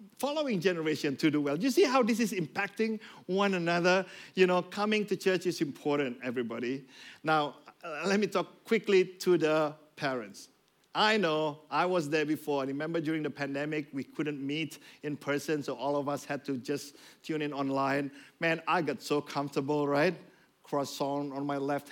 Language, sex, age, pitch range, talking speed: English, male, 50-69, 140-185 Hz, 180 wpm